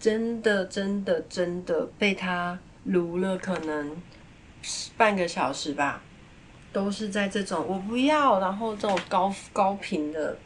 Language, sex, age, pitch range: Chinese, female, 30-49, 160-200 Hz